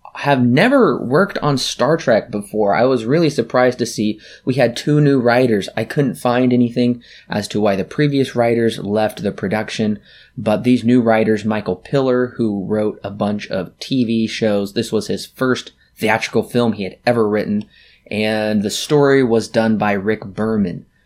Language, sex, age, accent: English, male, 20-39, American